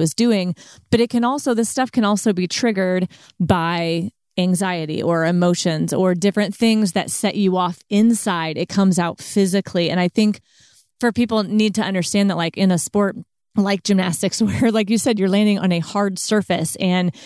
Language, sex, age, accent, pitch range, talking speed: English, female, 30-49, American, 180-210 Hz, 190 wpm